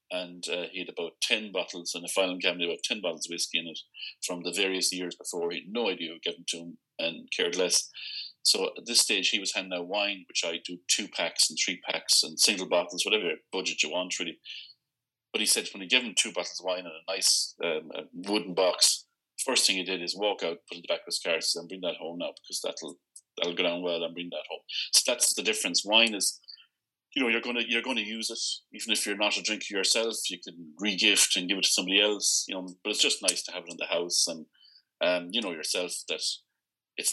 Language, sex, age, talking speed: English, male, 30-49, 250 wpm